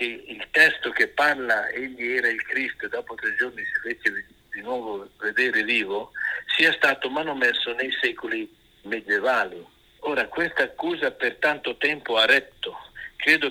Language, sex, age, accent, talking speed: Italian, male, 60-79, native, 150 wpm